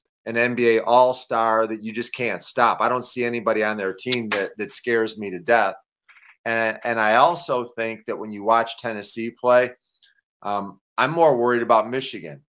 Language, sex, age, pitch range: English, male, 40-59, 115-130 Hz